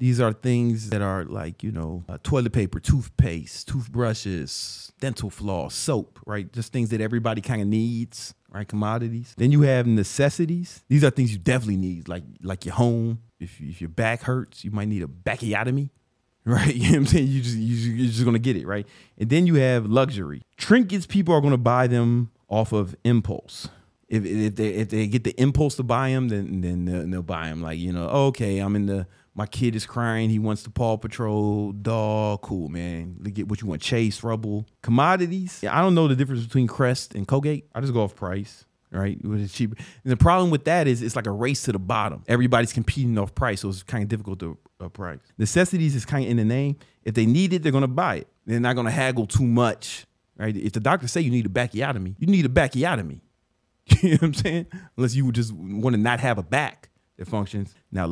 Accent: American